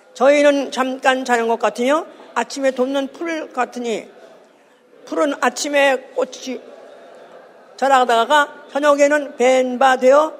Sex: female